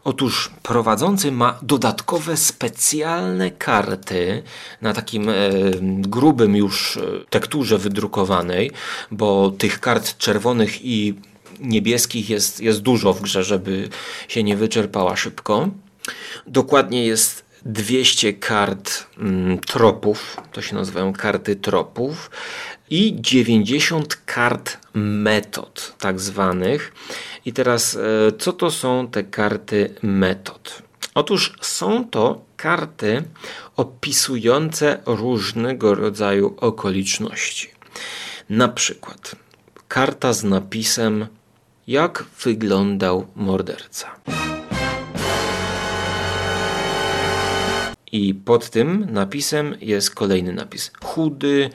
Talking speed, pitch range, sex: 90 wpm, 100-130 Hz, male